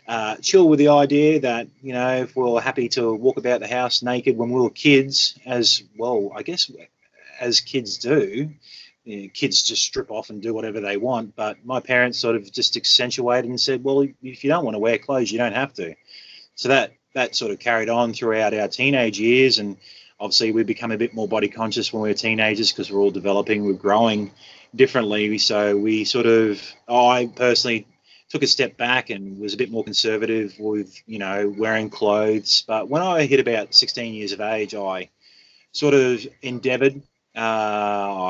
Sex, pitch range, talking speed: male, 105-125 Hz, 200 wpm